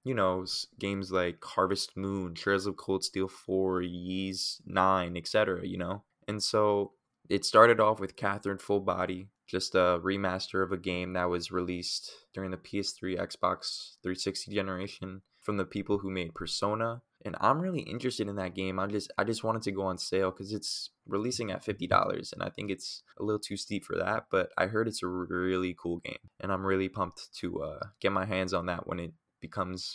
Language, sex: English, male